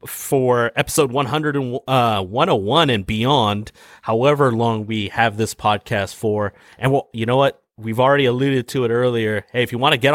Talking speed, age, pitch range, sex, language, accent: 190 wpm, 30-49, 105-135 Hz, male, English, American